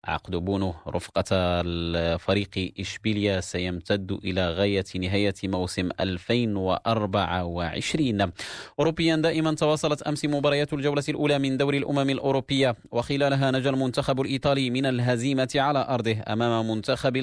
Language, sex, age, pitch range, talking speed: Arabic, male, 30-49, 100-130 Hz, 110 wpm